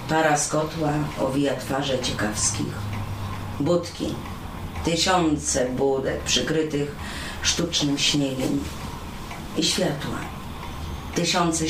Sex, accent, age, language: female, native, 40-59, Polish